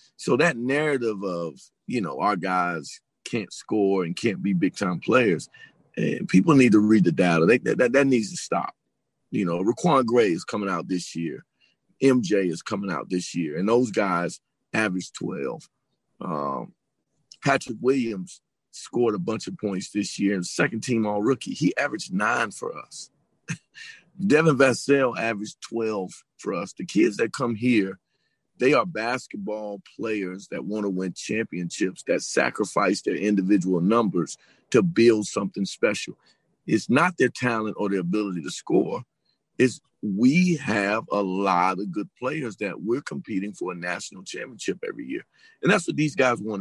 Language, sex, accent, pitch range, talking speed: English, male, American, 100-135 Hz, 165 wpm